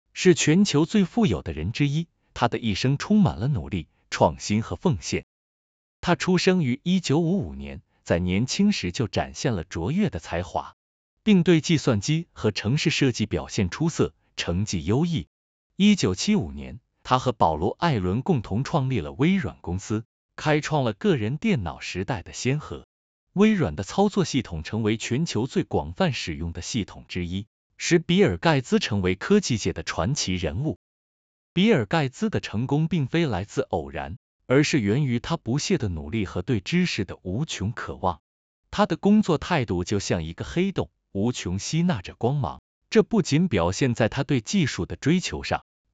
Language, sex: Chinese, male